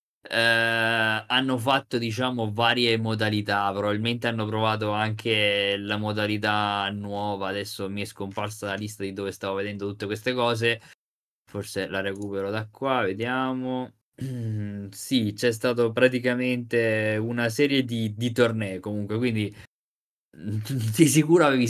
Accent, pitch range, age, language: native, 100-120 Hz, 20-39, Italian